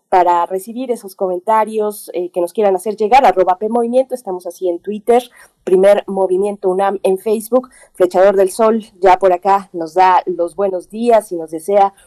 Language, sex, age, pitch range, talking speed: Spanish, female, 30-49, 175-205 Hz, 180 wpm